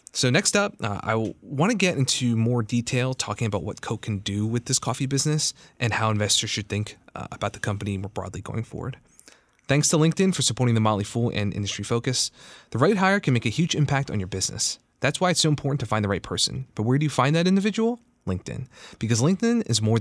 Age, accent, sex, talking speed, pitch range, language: 30-49, American, male, 235 wpm, 105-140 Hz, English